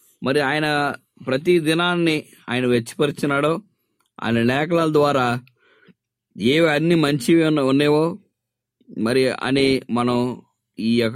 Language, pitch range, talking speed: English, 125-175 Hz, 95 wpm